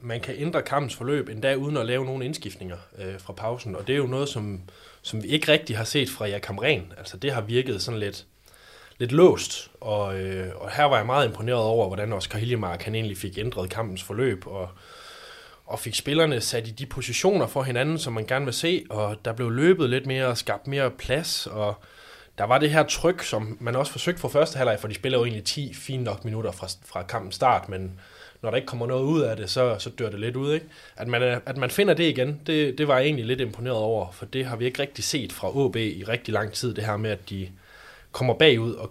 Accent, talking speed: native, 245 wpm